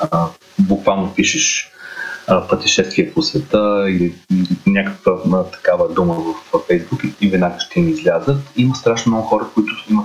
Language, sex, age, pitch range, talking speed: Bulgarian, male, 30-49, 100-135 Hz, 160 wpm